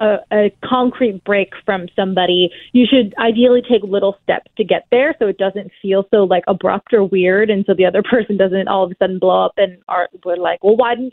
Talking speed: 225 wpm